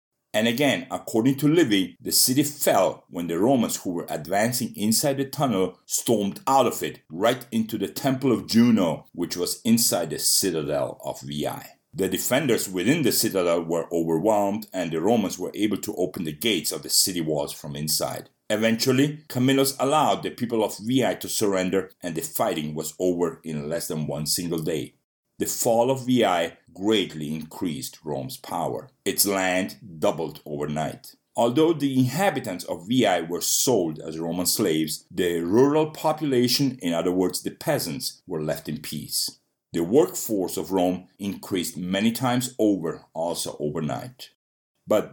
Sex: male